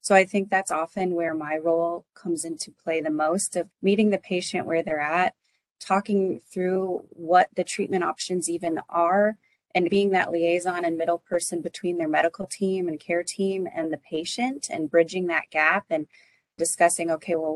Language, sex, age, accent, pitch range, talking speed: English, female, 30-49, American, 165-190 Hz, 180 wpm